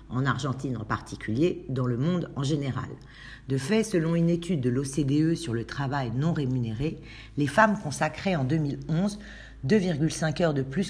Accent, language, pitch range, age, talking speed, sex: French, French, 125-165 Hz, 50-69, 160 wpm, female